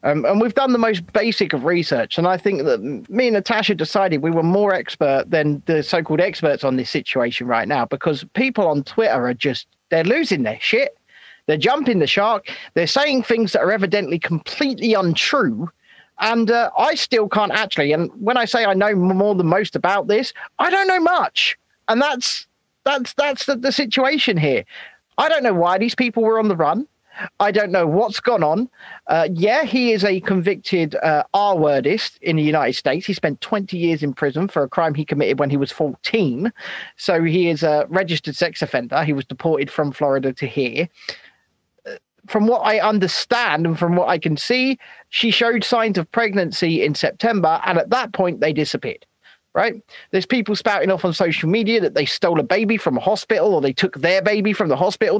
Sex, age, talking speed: male, 40-59, 200 wpm